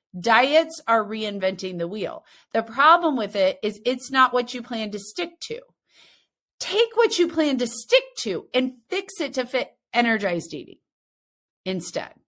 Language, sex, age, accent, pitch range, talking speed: English, female, 30-49, American, 185-300 Hz, 160 wpm